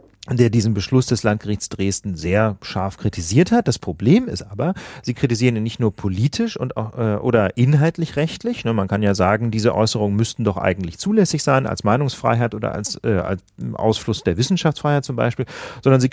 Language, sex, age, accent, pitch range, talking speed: German, male, 40-59, German, 105-130 Hz, 175 wpm